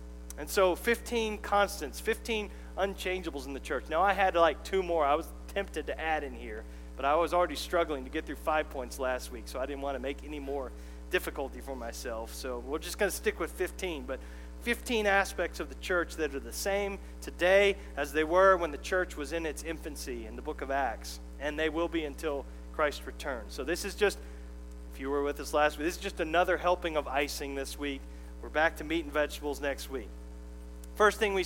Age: 40-59